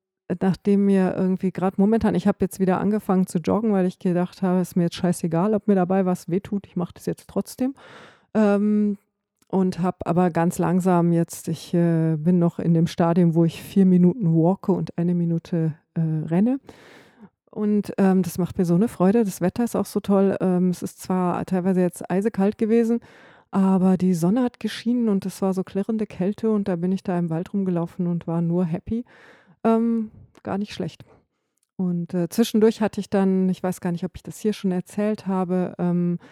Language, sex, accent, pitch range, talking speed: English, female, German, 175-210 Hz, 200 wpm